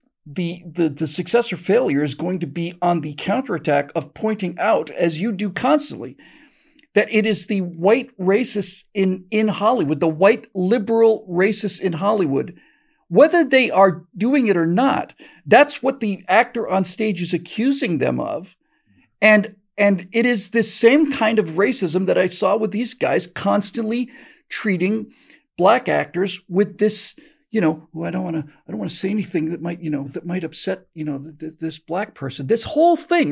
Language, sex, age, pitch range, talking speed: English, male, 50-69, 180-240 Hz, 185 wpm